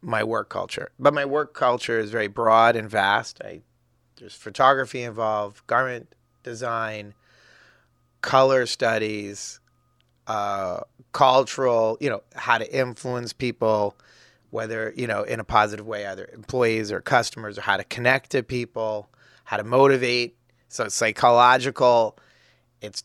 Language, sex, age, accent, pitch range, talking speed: English, male, 30-49, American, 110-130 Hz, 135 wpm